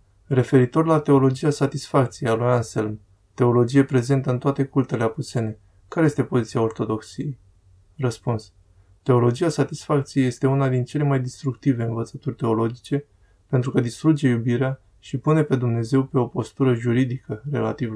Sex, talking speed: male, 135 wpm